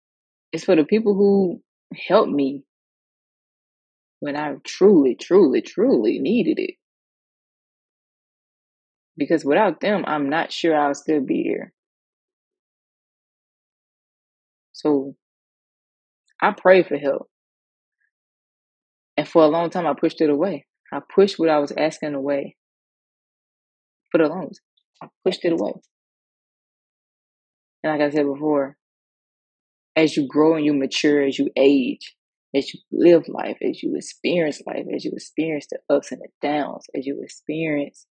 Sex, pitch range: female, 140-170 Hz